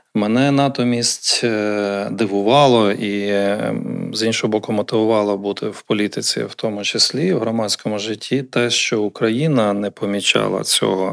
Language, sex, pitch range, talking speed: Ukrainian, male, 100-120 Hz, 125 wpm